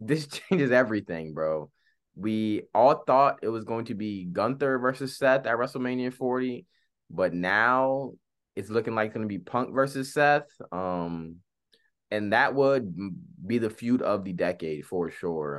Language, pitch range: English, 90-120 Hz